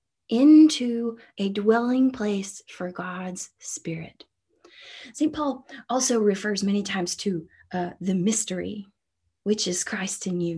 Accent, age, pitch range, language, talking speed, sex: American, 20-39, 205-275 Hz, English, 125 wpm, female